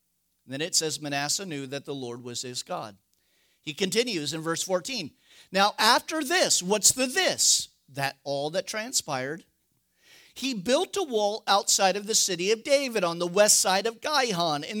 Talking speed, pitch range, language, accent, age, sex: 175 wpm, 140-195 Hz, English, American, 50-69, male